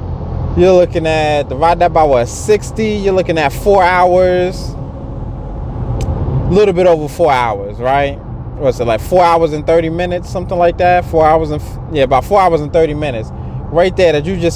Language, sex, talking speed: English, male, 190 wpm